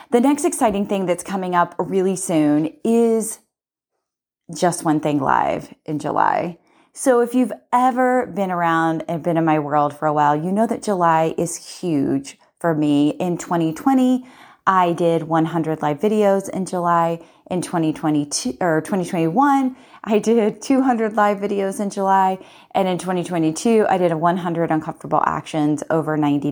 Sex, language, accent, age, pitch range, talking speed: female, English, American, 30-49, 165-205 Hz, 155 wpm